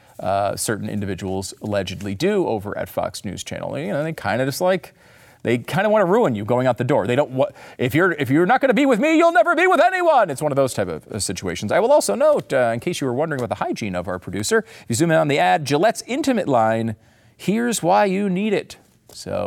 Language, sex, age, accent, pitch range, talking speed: English, male, 40-59, American, 115-185 Hz, 255 wpm